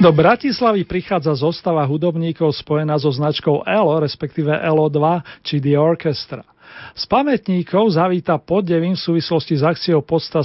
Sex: male